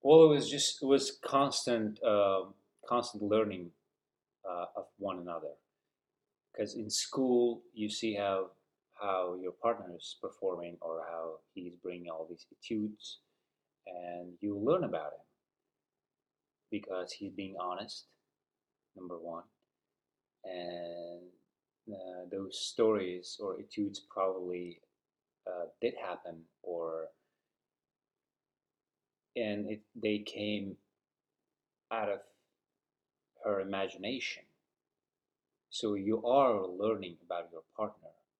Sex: male